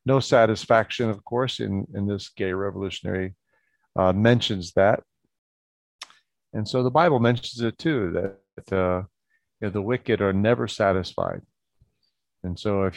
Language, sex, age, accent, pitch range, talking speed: English, male, 40-59, American, 95-110 Hz, 135 wpm